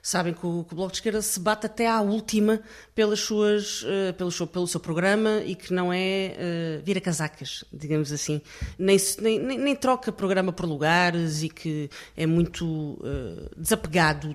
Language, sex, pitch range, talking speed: Portuguese, female, 155-185 Hz, 150 wpm